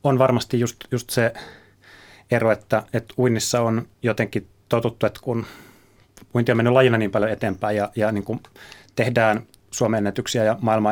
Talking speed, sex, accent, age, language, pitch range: 165 wpm, male, native, 30-49, Finnish, 105-120 Hz